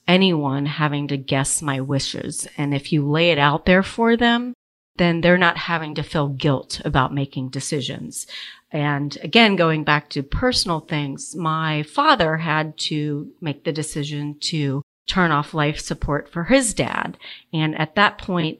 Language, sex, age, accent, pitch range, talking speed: English, female, 40-59, American, 145-175 Hz, 165 wpm